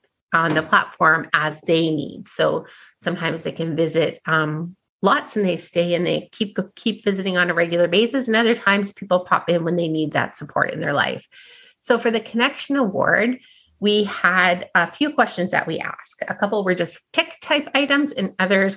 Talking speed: 195 wpm